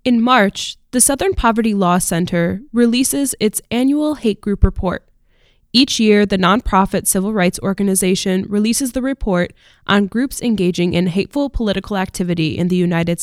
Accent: American